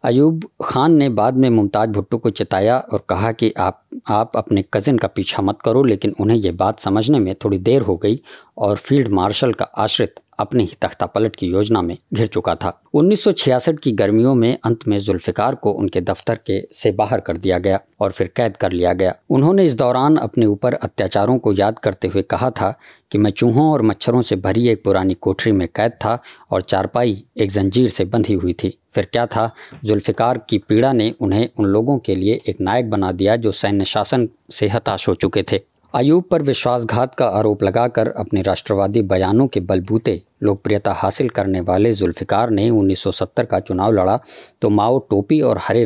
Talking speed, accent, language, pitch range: 145 wpm, Indian, English, 100-125 Hz